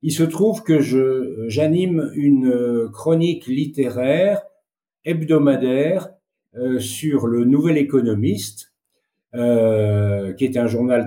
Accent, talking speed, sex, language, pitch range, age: French, 105 wpm, male, French, 115-150 Hz, 50-69